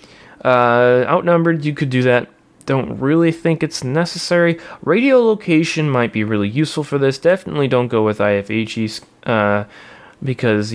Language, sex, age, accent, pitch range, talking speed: English, male, 20-39, American, 110-140 Hz, 145 wpm